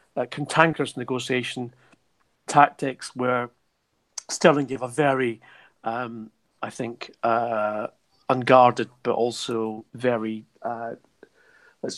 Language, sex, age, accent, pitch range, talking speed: English, male, 40-59, British, 115-135 Hz, 95 wpm